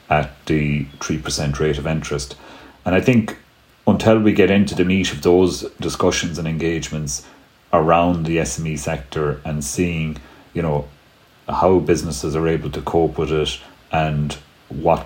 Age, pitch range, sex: 40-59, 75-85 Hz, male